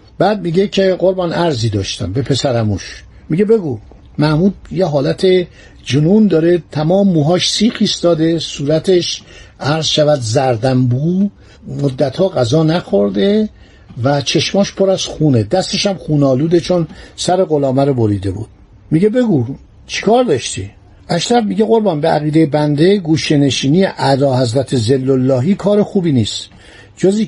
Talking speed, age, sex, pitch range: 130 wpm, 60-79, male, 130-190 Hz